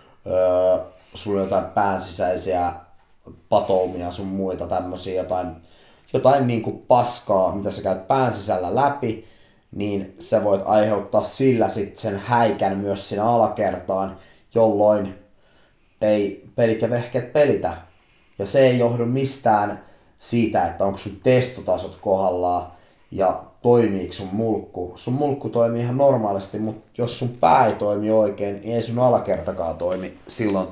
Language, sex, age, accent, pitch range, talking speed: Finnish, male, 30-49, native, 95-115 Hz, 125 wpm